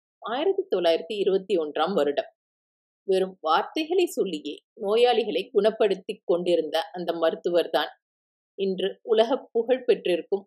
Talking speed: 95 wpm